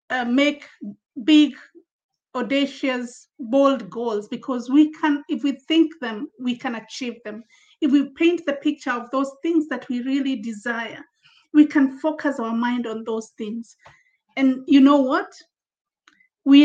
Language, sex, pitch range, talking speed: English, female, 250-300 Hz, 150 wpm